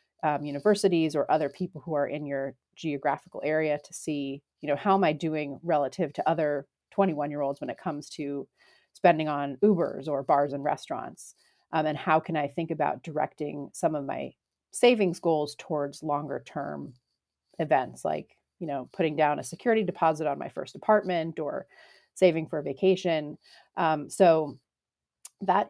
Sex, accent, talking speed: female, American, 165 wpm